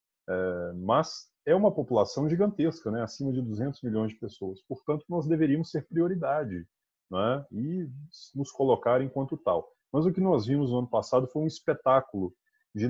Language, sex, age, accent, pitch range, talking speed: Portuguese, male, 20-39, Brazilian, 100-140 Hz, 170 wpm